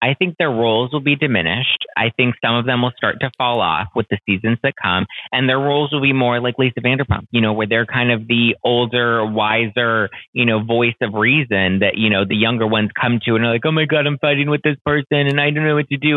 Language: English